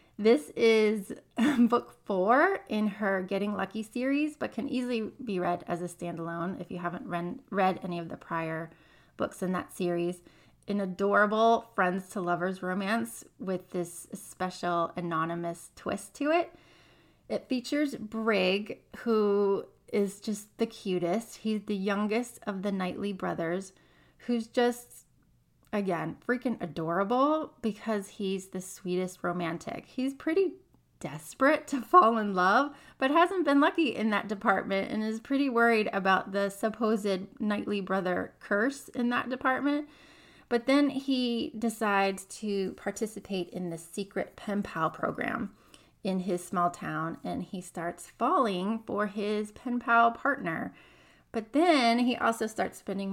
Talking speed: 140 wpm